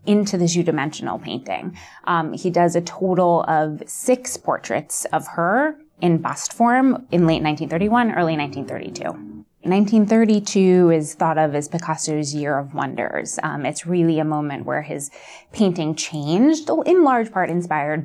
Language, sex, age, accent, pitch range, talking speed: English, female, 20-39, American, 155-205 Hz, 145 wpm